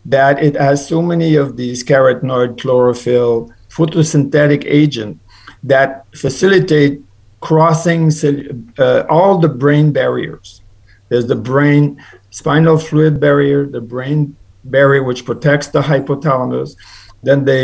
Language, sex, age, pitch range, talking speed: English, male, 50-69, 115-155 Hz, 115 wpm